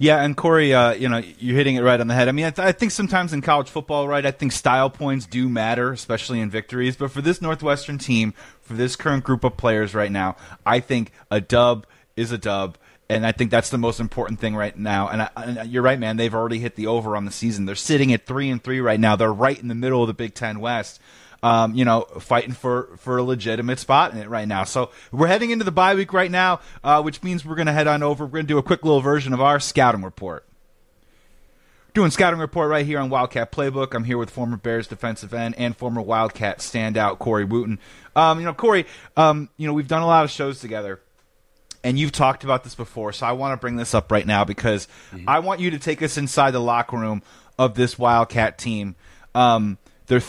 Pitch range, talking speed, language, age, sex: 115-145 Hz, 245 wpm, English, 30-49, male